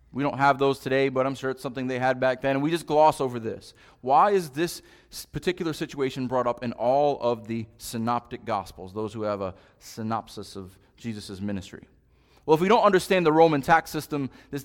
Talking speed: 210 wpm